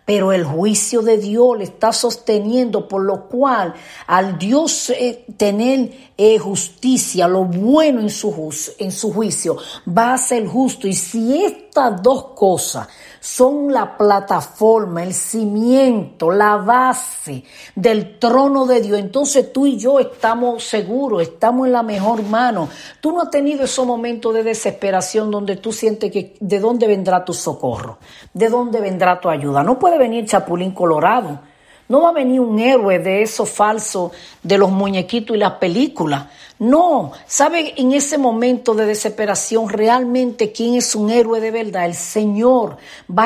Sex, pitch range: female, 200-250 Hz